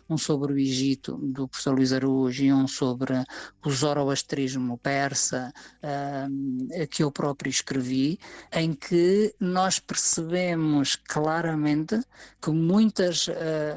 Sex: female